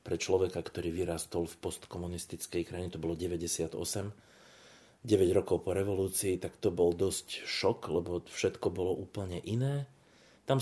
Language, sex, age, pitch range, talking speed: Slovak, male, 30-49, 85-105 Hz, 140 wpm